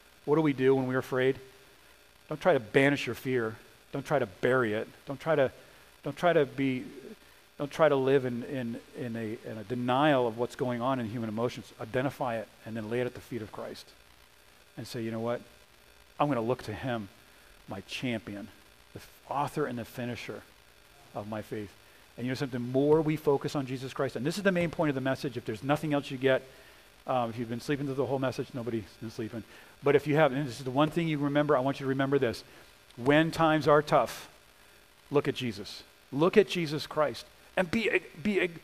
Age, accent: 40-59, American